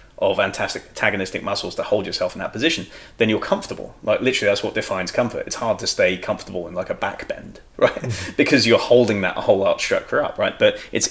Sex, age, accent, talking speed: male, 20-39, British, 215 wpm